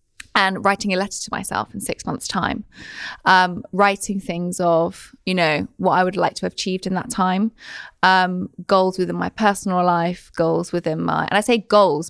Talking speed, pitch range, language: 195 wpm, 175-200 Hz, English